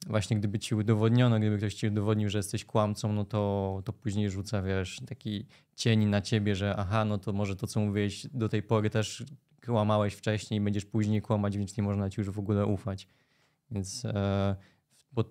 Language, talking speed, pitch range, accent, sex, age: Polish, 190 wpm, 105-125 Hz, native, male, 20-39